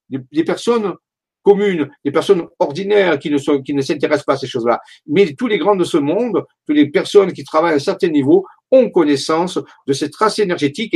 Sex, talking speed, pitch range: male, 210 wpm, 145-210 Hz